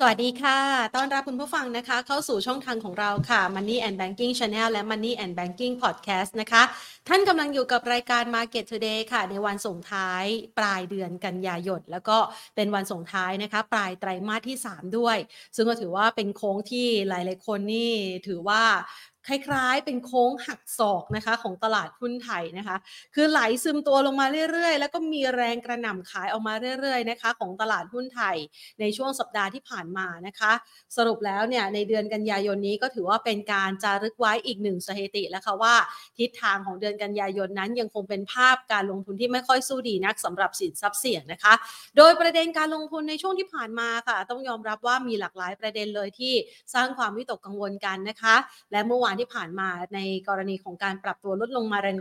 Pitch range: 200-250 Hz